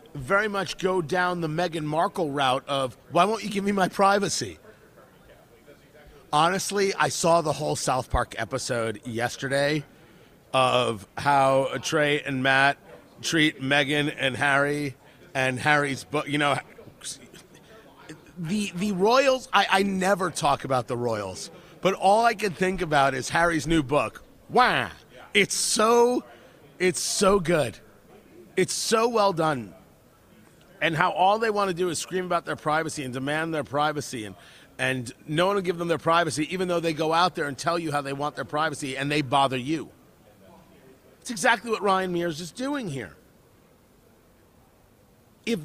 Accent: American